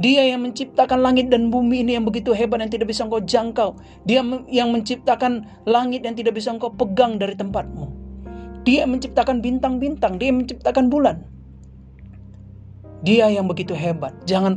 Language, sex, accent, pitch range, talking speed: Indonesian, male, native, 175-250 Hz, 160 wpm